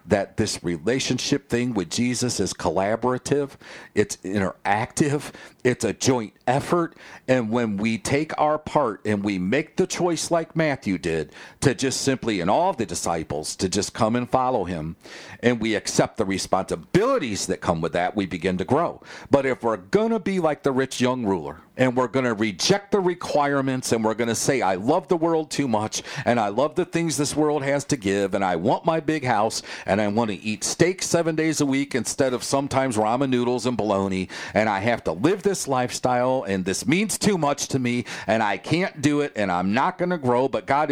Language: English